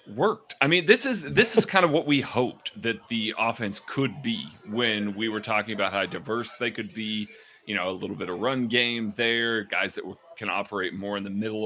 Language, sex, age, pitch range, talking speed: English, male, 30-49, 105-130 Hz, 230 wpm